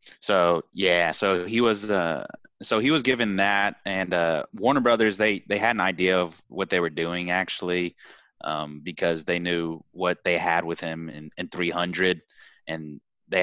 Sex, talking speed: male, 180 wpm